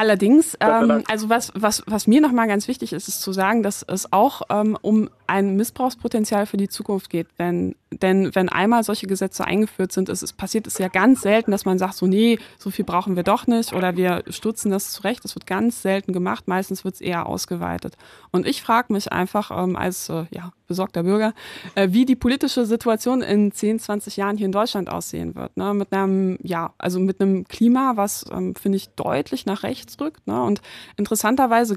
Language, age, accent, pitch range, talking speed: German, 20-39, German, 185-220 Hz, 210 wpm